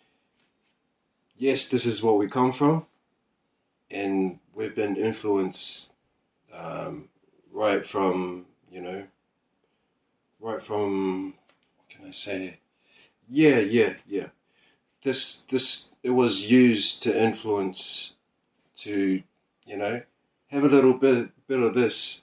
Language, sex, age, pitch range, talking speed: English, male, 20-39, 100-125 Hz, 115 wpm